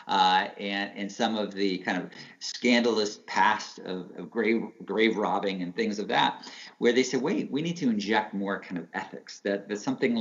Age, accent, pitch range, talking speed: 40-59, American, 100-130 Hz, 200 wpm